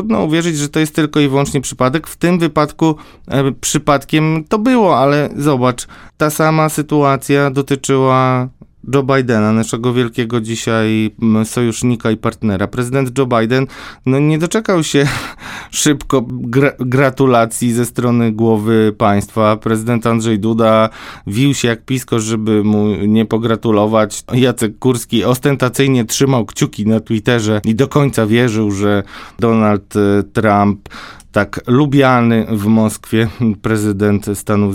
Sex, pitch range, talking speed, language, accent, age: male, 115-145 Hz, 130 wpm, Polish, native, 20-39